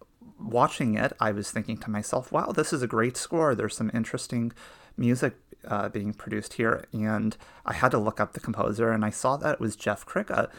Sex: male